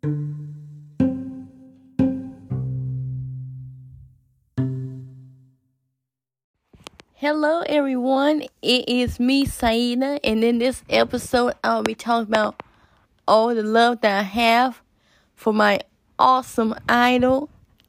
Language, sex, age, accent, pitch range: English, female, 20-39, American, 210-250 Hz